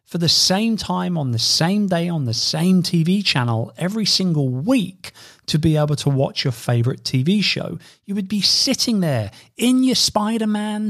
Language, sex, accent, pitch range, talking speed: English, male, British, 125-190 Hz, 180 wpm